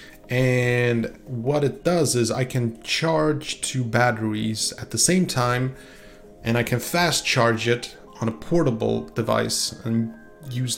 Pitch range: 115-145 Hz